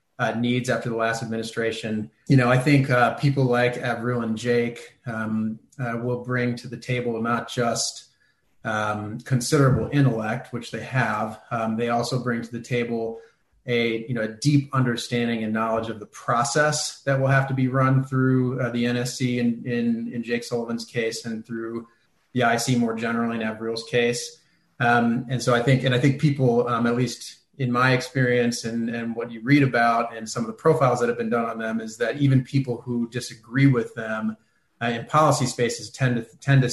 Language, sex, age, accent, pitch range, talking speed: English, male, 30-49, American, 115-130 Hz, 200 wpm